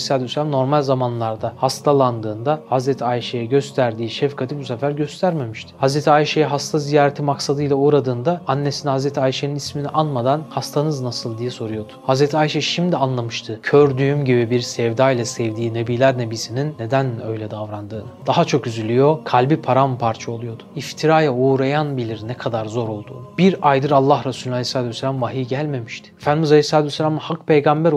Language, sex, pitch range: Turkish, male, 125-150 Hz